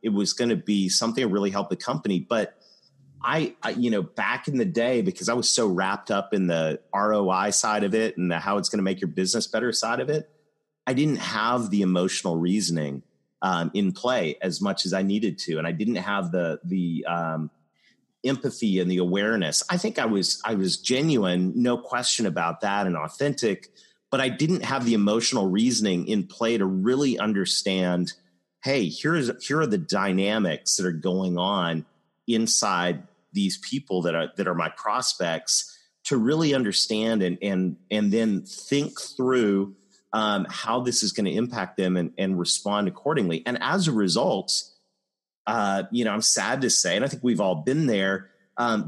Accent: American